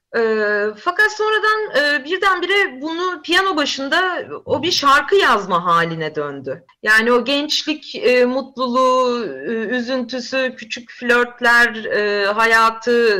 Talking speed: 90 wpm